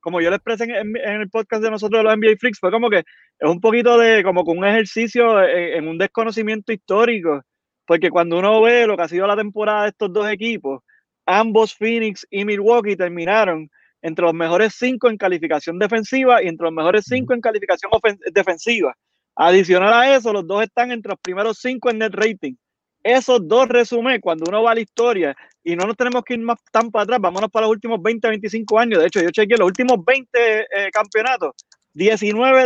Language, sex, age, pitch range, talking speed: English, male, 30-49, 185-235 Hz, 205 wpm